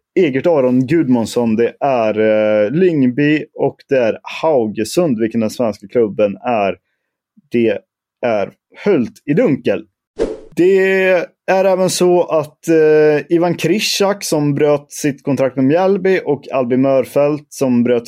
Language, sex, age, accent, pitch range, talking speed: Swedish, male, 30-49, native, 115-155 Hz, 135 wpm